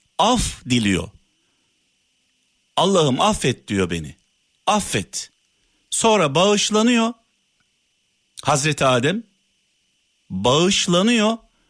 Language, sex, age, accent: Turkish, male, 60-79, native